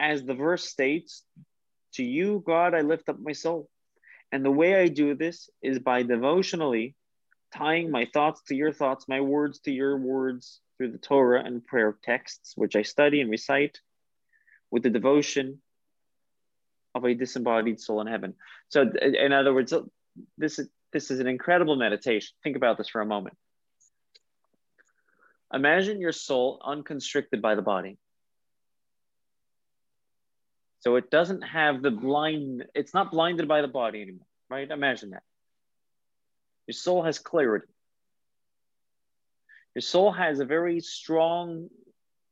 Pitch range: 125-160 Hz